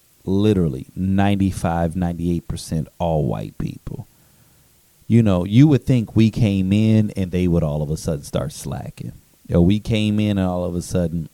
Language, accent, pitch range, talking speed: English, American, 85-110 Hz, 175 wpm